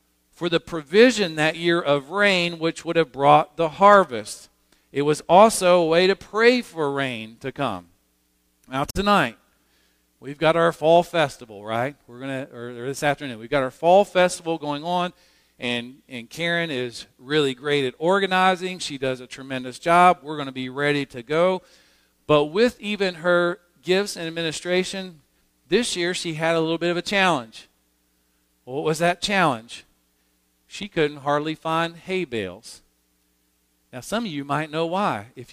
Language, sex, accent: English, male, American